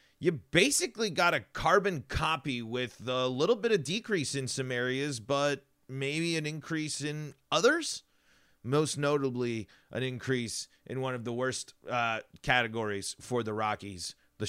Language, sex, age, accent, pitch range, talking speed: English, male, 30-49, American, 115-160 Hz, 150 wpm